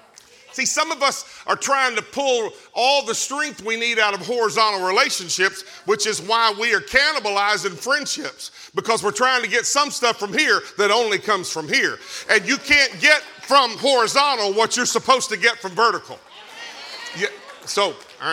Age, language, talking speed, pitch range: 50-69, English, 170 wpm, 195-270 Hz